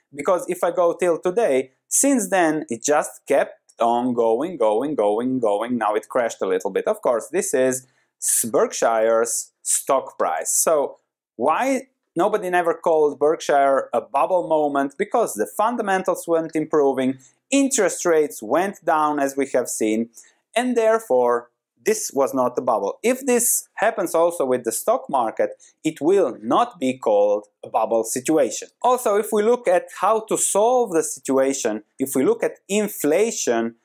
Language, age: English, 30-49